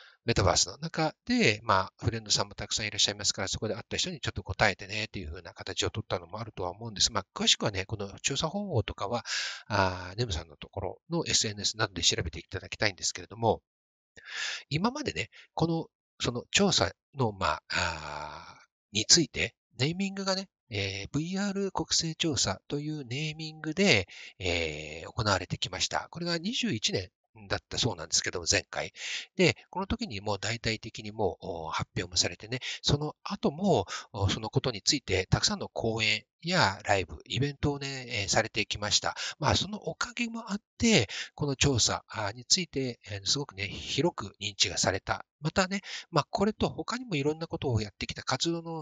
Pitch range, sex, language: 100-160 Hz, male, Japanese